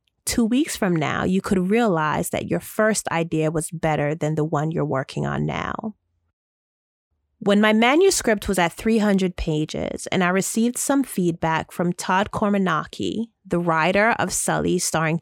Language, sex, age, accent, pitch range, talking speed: English, female, 30-49, American, 160-215 Hz, 160 wpm